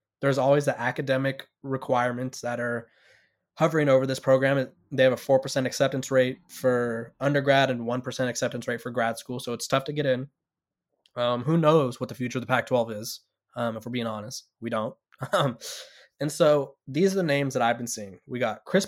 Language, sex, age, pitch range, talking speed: English, male, 20-39, 120-135 Hz, 200 wpm